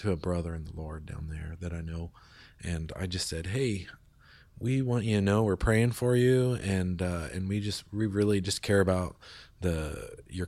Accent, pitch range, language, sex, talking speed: American, 90-105 Hz, English, male, 210 wpm